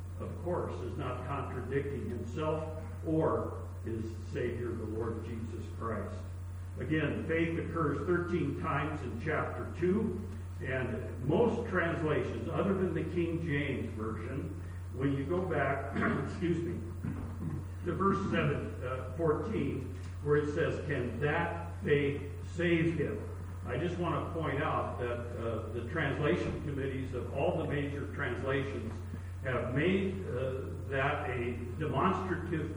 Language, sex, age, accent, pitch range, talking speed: English, male, 60-79, American, 90-120 Hz, 130 wpm